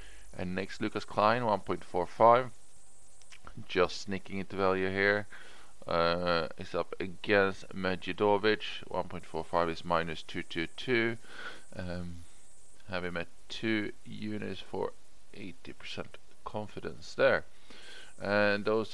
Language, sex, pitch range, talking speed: English, male, 90-110 Hz, 95 wpm